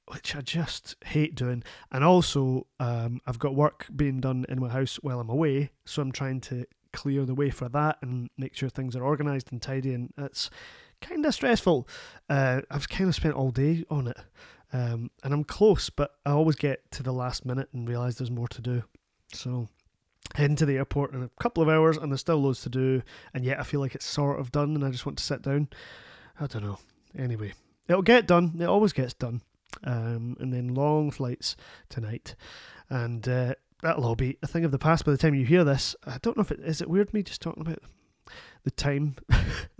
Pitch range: 130-155 Hz